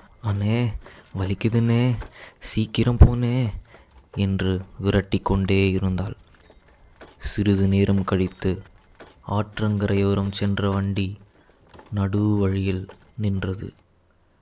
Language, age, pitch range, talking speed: Tamil, 20-39, 95-105 Hz, 65 wpm